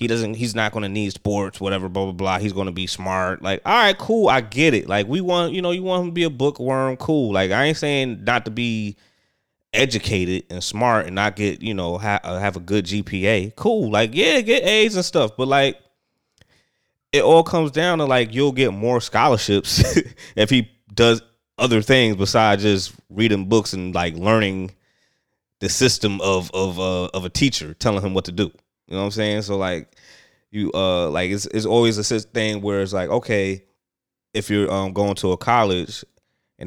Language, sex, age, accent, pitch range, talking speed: English, male, 20-39, American, 95-120 Hz, 210 wpm